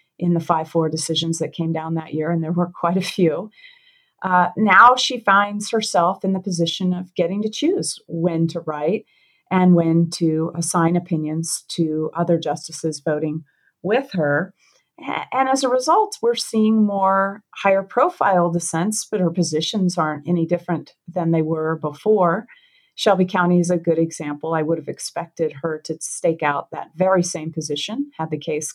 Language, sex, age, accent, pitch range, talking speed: English, female, 40-59, American, 165-200 Hz, 170 wpm